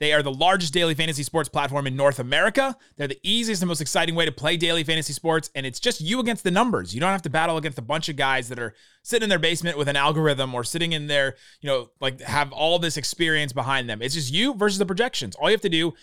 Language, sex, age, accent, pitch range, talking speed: English, male, 30-49, American, 135-180 Hz, 275 wpm